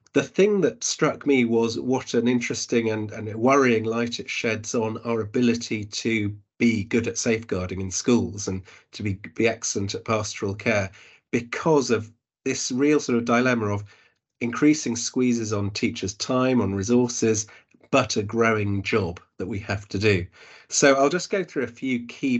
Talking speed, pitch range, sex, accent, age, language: 175 wpm, 105-120 Hz, male, British, 30-49, English